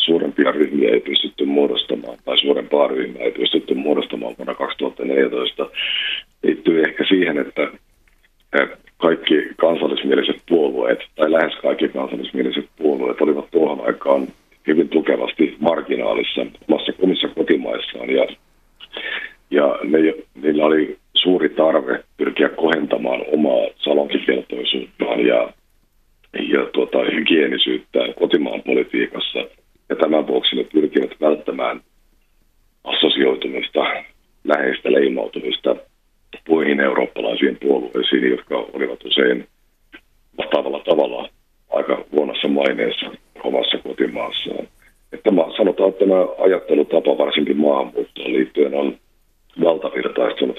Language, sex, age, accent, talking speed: Finnish, male, 50-69, native, 95 wpm